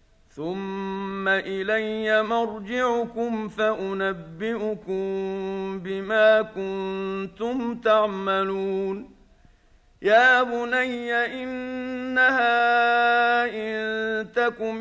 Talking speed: 50 wpm